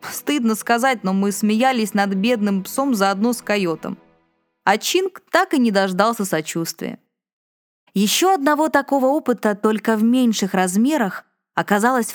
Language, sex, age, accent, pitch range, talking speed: Russian, female, 20-39, native, 180-240 Hz, 135 wpm